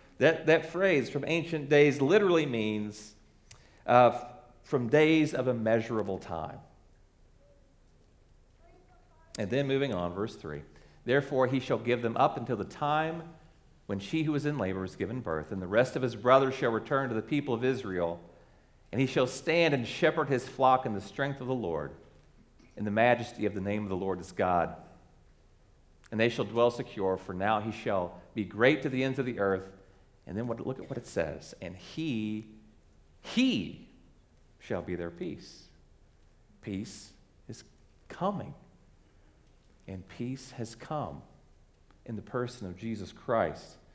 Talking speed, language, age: 165 wpm, English, 40-59